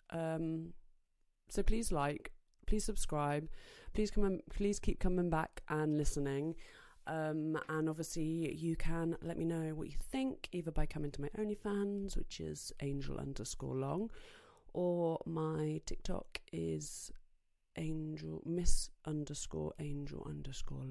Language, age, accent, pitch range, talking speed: English, 30-49, British, 140-205 Hz, 135 wpm